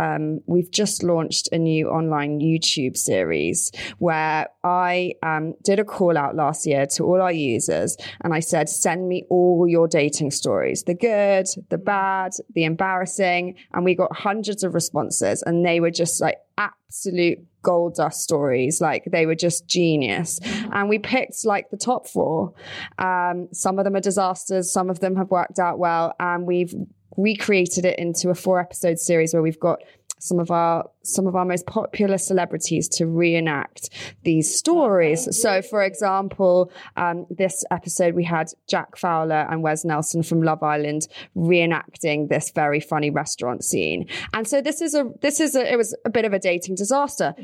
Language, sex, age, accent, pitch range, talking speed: English, female, 20-39, British, 165-195 Hz, 175 wpm